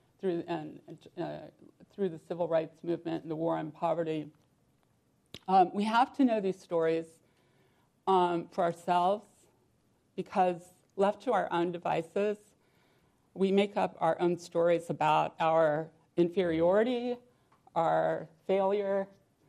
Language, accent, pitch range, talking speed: English, American, 160-190 Hz, 125 wpm